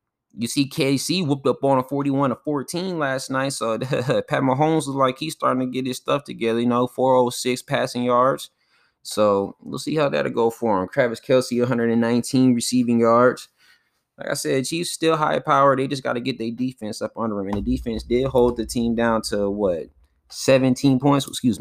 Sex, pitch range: male, 105-130 Hz